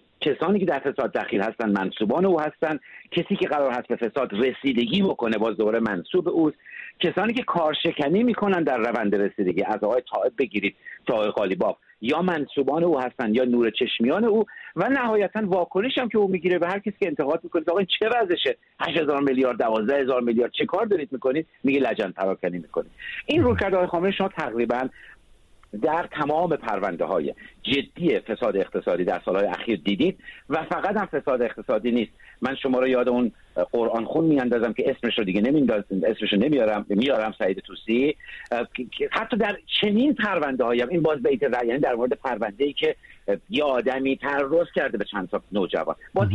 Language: Persian